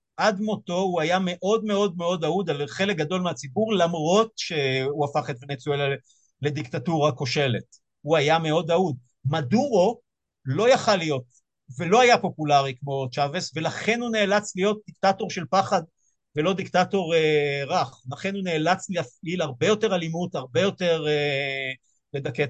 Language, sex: Hebrew, male